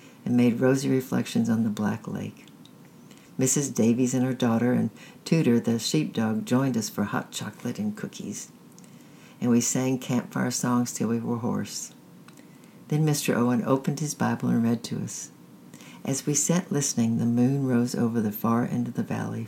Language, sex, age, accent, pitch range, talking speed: English, female, 60-79, American, 115-140 Hz, 175 wpm